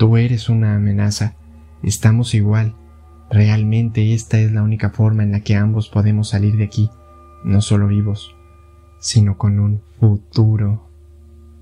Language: Spanish